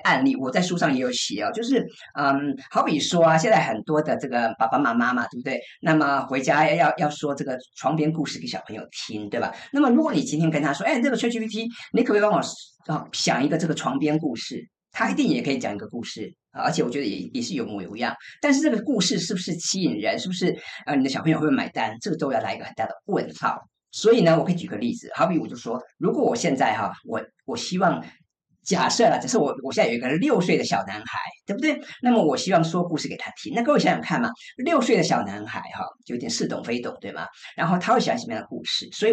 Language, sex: Chinese, female